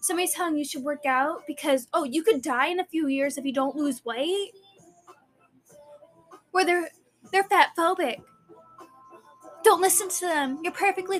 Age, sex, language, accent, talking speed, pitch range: 10-29, female, English, American, 165 wpm, 255-330 Hz